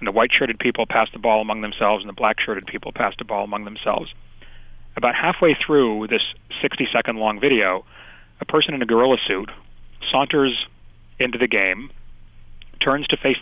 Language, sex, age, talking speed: English, male, 30-49, 165 wpm